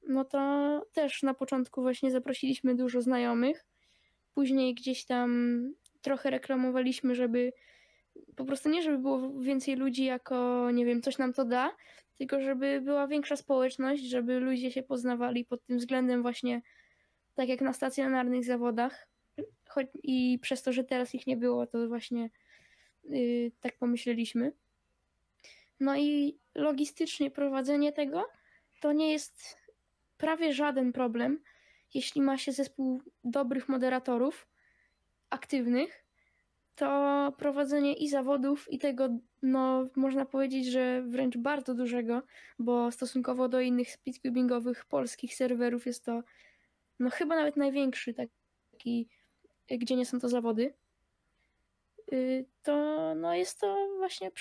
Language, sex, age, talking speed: Polish, female, 10-29, 130 wpm